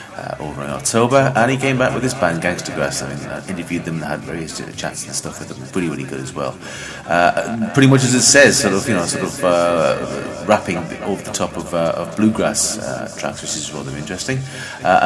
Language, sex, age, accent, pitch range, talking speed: English, male, 30-49, British, 80-110 Hz, 230 wpm